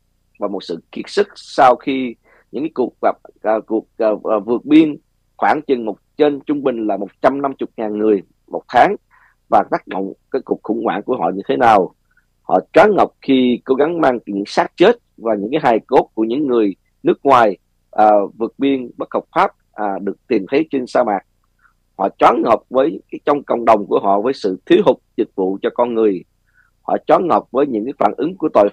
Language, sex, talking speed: Vietnamese, male, 210 wpm